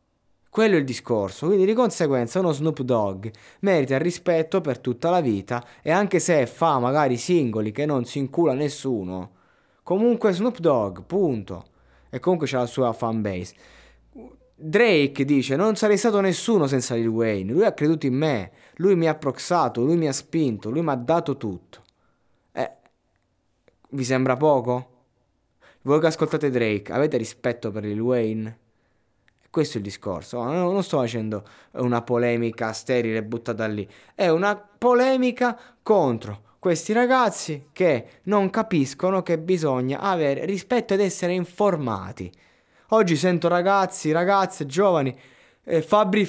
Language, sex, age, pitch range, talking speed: Italian, male, 20-39, 115-175 Hz, 150 wpm